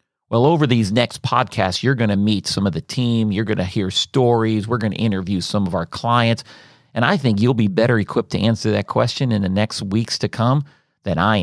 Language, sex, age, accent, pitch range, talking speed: English, male, 40-59, American, 95-115 Hz, 235 wpm